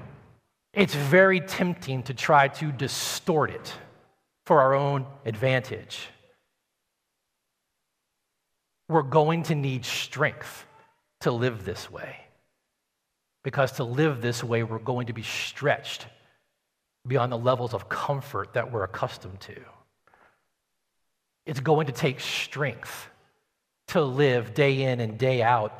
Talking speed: 120 wpm